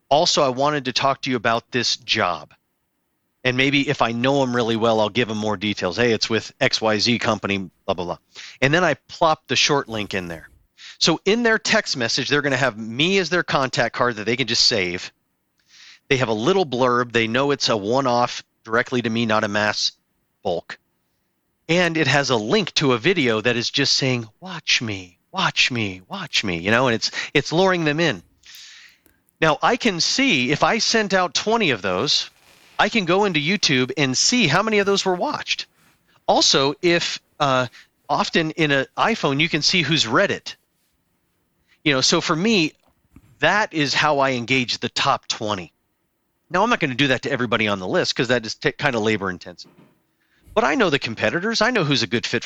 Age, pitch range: 40-59, 115-160 Hz